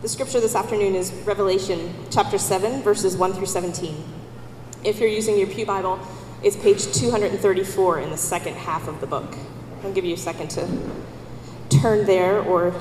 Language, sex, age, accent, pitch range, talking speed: English, female, 20-39, American, 160-195 Hz, 175 wpm